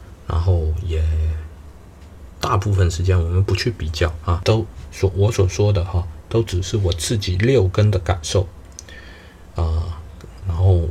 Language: Chinese